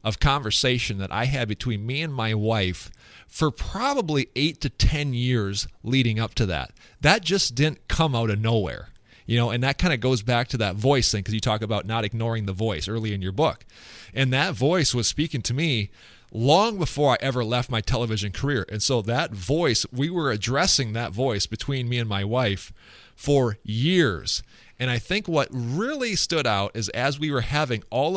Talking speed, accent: 200 wpm, American